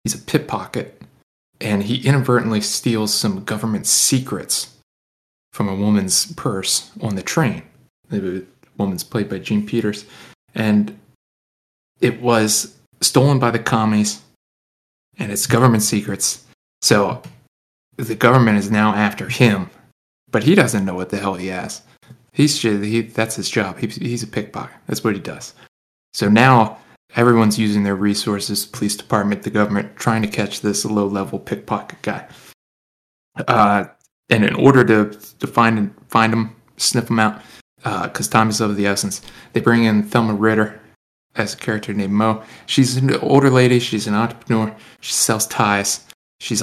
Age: 20-39